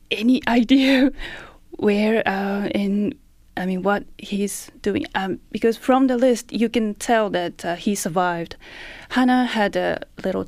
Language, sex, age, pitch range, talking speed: English, female, 20-39, 170-200 Hz, 150 wpm